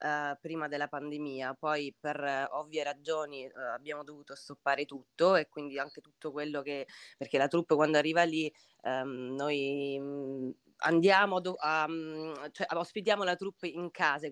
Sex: female